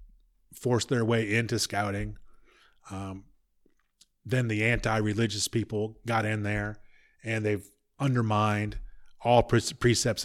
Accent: American